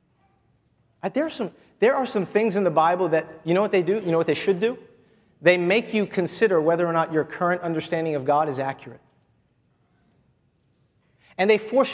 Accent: American